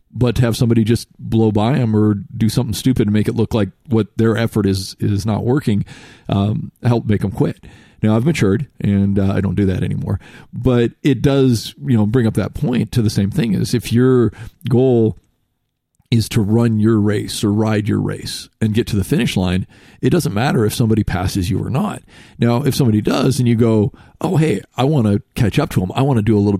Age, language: 40-59, English